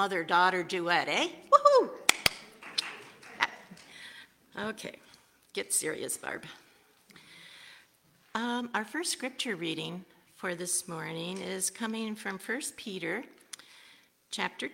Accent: American